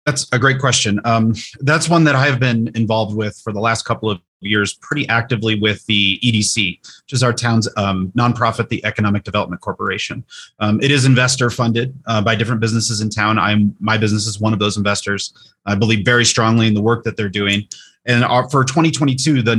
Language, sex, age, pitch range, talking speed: English, male, 30-49, 105-125 Hz, 210 wpm